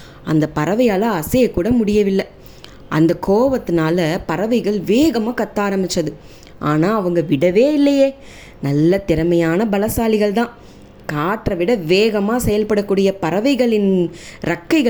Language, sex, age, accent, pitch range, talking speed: English, female, 20-39, Indian, 170-225 Hz, 95 wpm